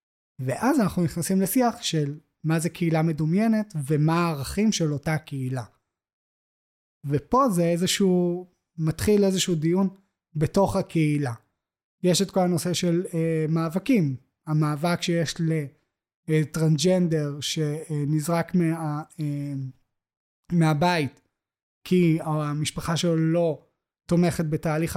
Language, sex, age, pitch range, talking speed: Hebrew, male, 20-39, 150-185 Hz, 100 wpm